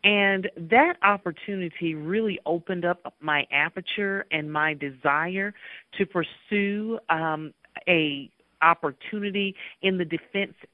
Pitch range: 155-195 Hz